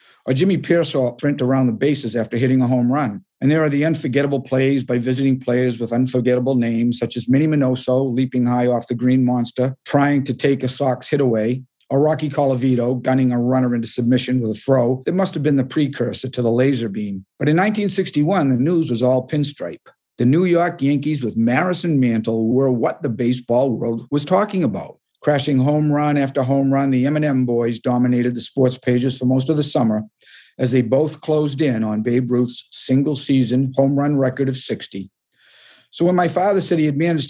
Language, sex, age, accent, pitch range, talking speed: English, male, 50-69, American, 125-145 Hz, 205 wpm